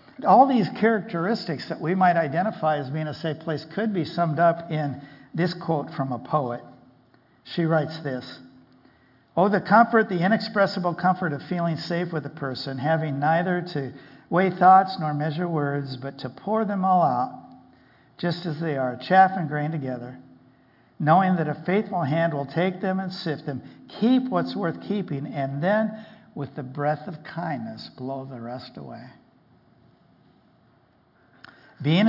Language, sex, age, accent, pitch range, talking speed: English, male, 60-79, American, 130-180 Hz, 160 wpm